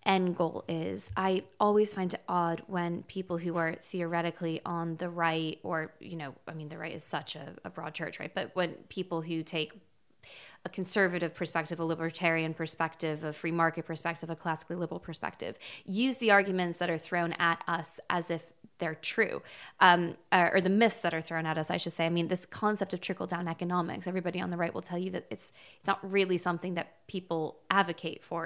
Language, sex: English, female